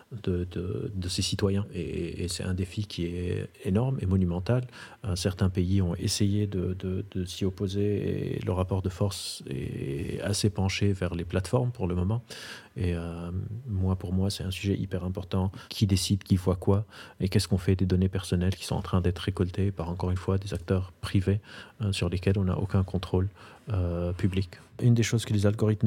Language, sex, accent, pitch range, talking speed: French, male, French, 95-110 Hz, 205 wpm